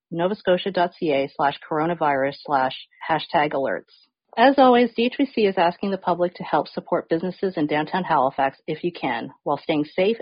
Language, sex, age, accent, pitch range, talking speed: English, female, 40-59, American, 150-190 Hz, 155 wpm